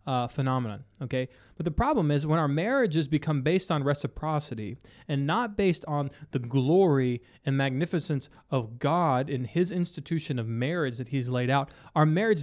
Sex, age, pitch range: male, 30-49, 125-155 Hz